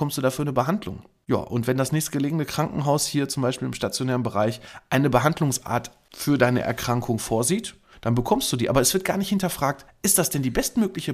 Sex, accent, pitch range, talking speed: male, German, 120-155 Hz, 200 wpm